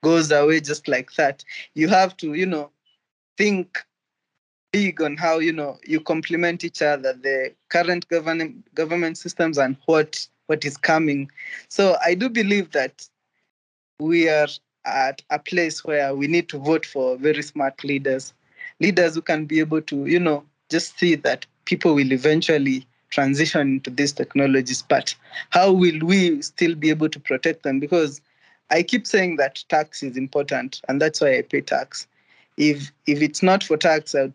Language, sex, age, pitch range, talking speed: English, male, 20-39, 140-170 Hz, 175 wpm